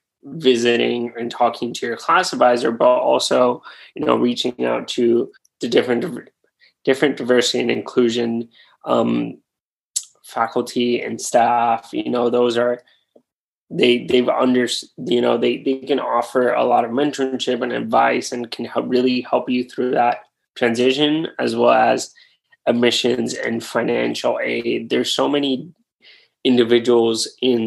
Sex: male